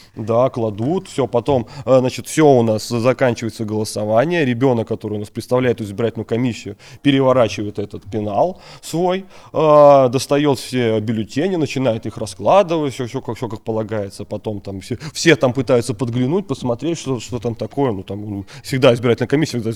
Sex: male